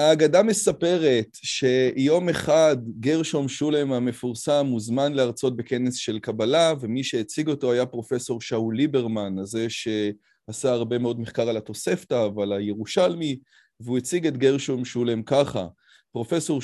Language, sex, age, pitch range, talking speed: Hebrew, male, 30-49, 115-150 Hz, 125 wpm